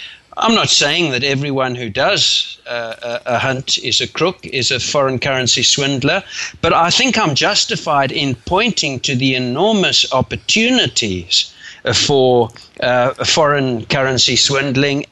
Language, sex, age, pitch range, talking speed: English, male, 60-79, 120-155 Hz, 135 wpm